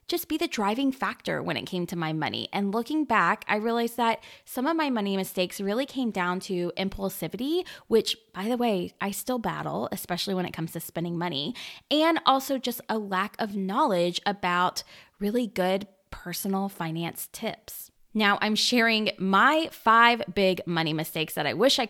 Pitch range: 180-255 Hz